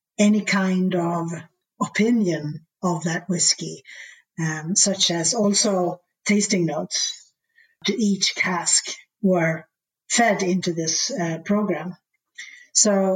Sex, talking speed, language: female, 105 wpm, English